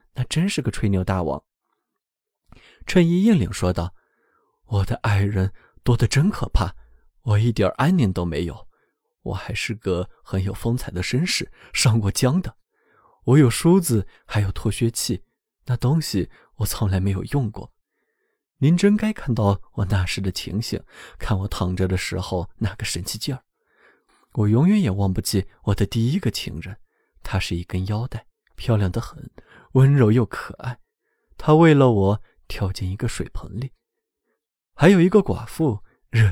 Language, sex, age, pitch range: Chinese, male, 20-39, 95-150 Hz